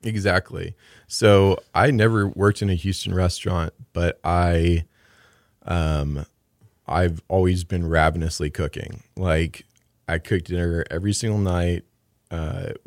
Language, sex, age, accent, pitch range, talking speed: English, male, 30-49, American, 80-100 Hz, 115 wpm